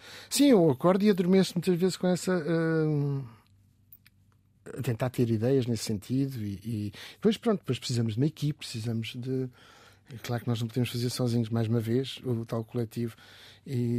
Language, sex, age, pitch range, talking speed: Portuguese, male, 50-69, 115-150 Hz, 175 wpm